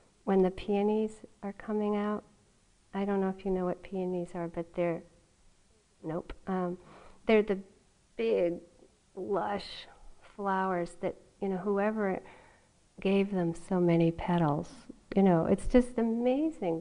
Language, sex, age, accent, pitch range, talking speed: English, female, 50-69, American, 175-215 Hz, 135 wpm